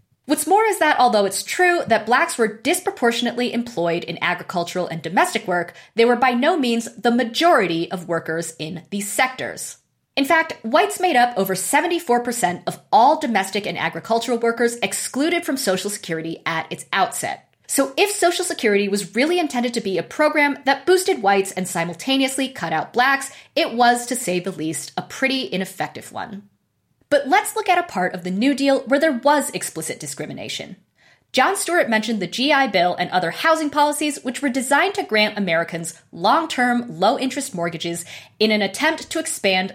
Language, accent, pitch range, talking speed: English, American, 180-275 Hz, 180 wpm